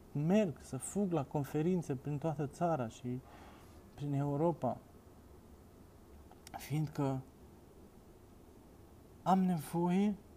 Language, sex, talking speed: Romanian, male, 80 wpm